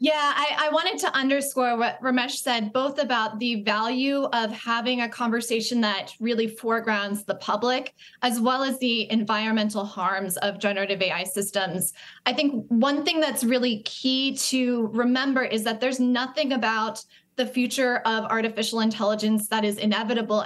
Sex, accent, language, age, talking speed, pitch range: female, American, English, 10-29, 160 wpm, 215-255 Hz